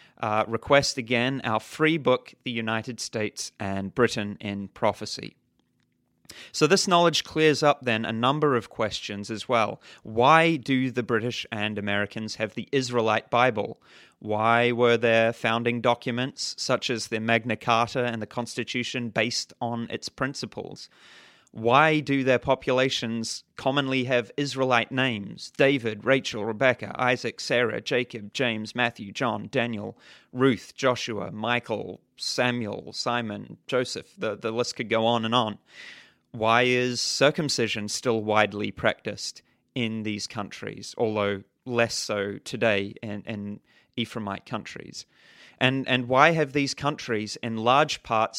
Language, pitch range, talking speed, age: English, 110-130 Hz, 135 wpm, 30-49